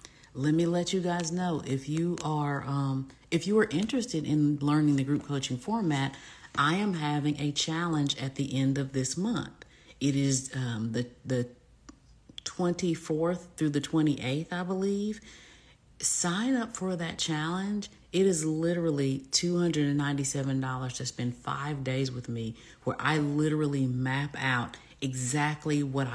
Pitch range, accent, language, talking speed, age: 135-165 Hz, American, English, 145 wpm, 40-59